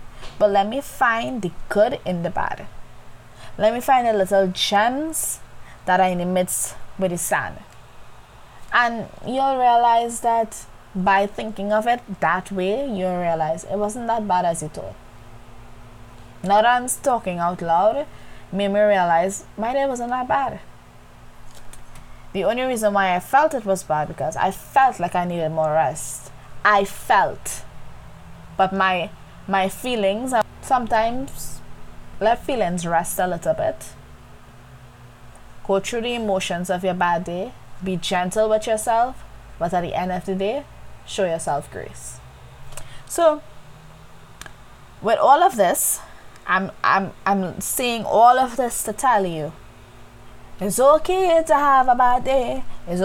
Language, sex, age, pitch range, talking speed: English, female, 20-39, 175-240 Hz, 150 wpm